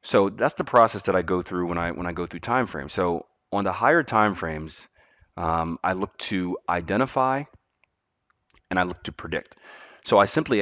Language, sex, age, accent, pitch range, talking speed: English, male, 30-49, American, 85-105 Hz, 200 wpm